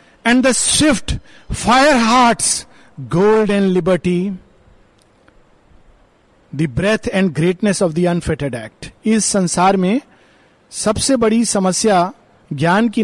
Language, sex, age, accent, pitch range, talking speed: Hindi, male, 50-69, native, 195-255 Hz, 110 wpm